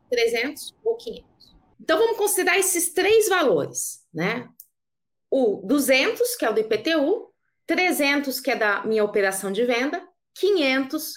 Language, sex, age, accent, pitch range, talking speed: Portuguese, female, 30-49, Brazilian, 230-360 Hz, 140 wpm